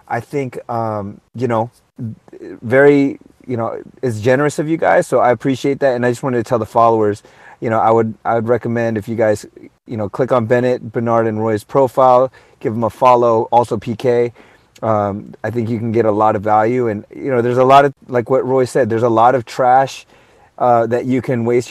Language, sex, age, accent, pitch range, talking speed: English, male, 30-49, American, 110-135 Hz, 225 wpm